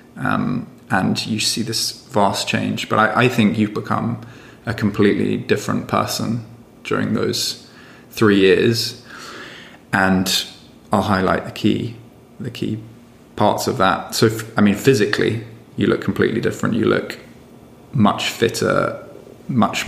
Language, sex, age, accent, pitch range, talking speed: English, male, 20-39, British, 100-115 Hz, 135 wpm